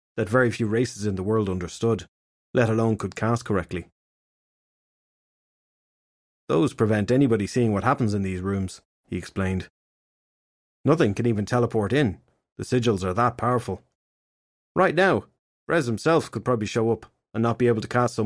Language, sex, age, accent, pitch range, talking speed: English, male, 30-49, Irish, 100-125 Hz, 160 wpm